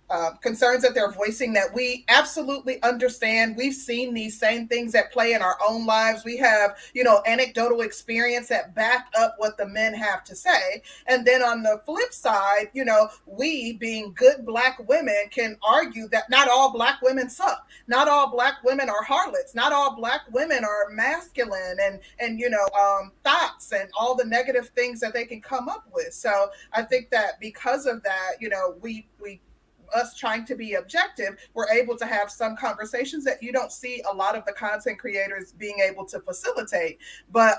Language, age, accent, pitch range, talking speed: English, 30-49, American, 215-260 Hz, 195 wpm